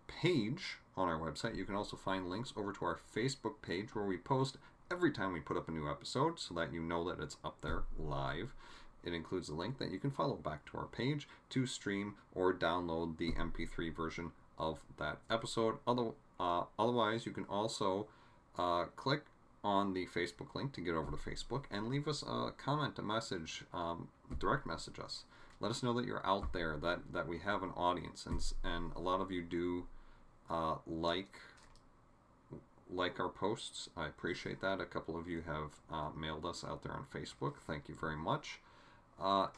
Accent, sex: American, male